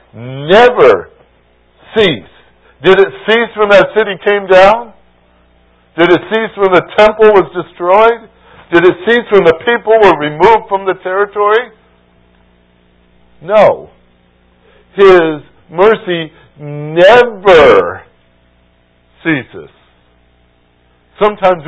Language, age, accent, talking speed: English, 60-79, American, 95 wpm